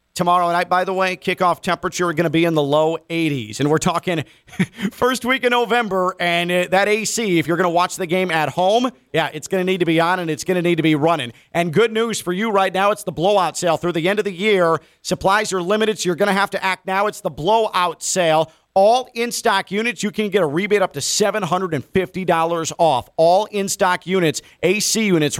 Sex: male